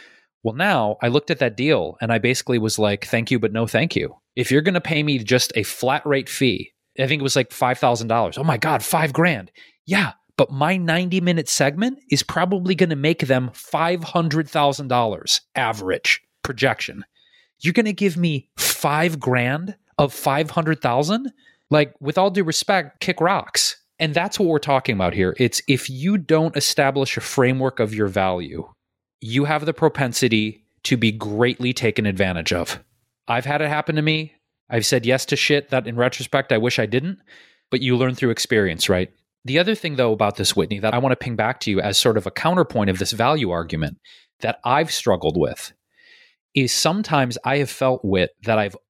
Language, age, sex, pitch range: English, 30-49, male, 110-155 Hz